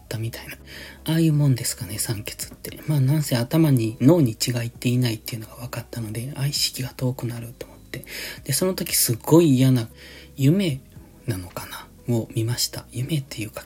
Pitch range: 115-145 Hz